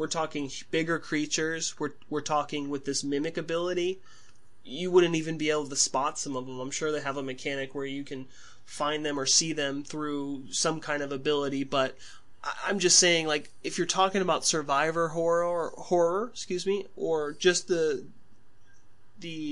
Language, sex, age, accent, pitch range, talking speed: English, male, 20-39, American, 140-170 Hz, 180 wpm